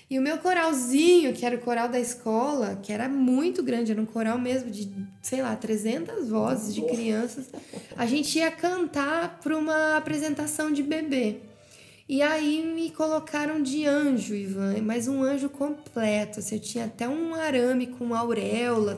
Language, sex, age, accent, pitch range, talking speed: Portuguese, female, 10-29, Brazilian, 235-300 Hz, 170 wpm